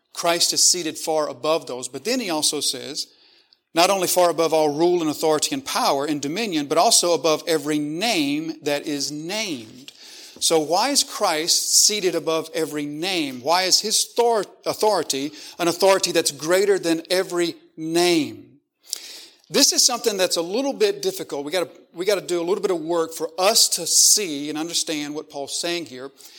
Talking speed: 175 wpm